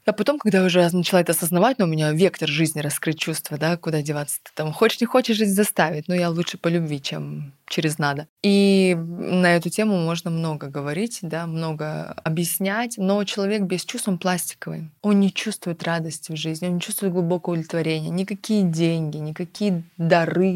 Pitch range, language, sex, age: 160-185 Hz, Russian, female, 20-39